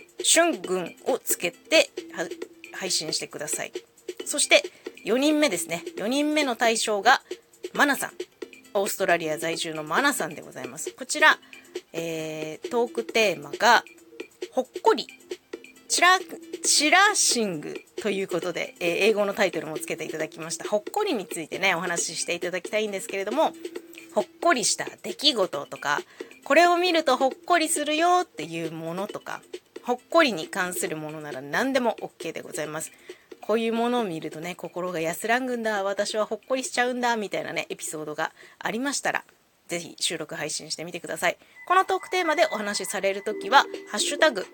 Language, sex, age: Japanese, female, 20-39